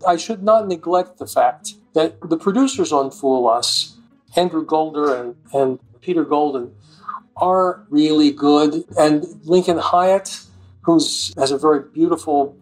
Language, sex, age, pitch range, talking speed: English, male, 50-69, 150-205 Hz, 140 wpm